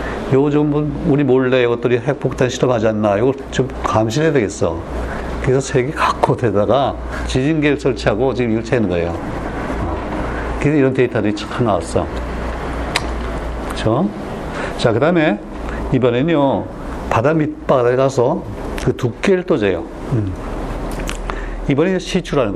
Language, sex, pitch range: Korean, male, 110-145 Hz